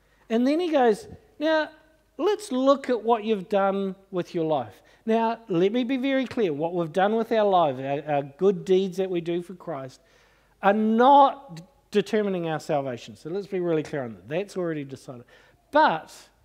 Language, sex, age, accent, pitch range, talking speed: English, male, 50-69, Australian, 145-205 Hz, 185 wpm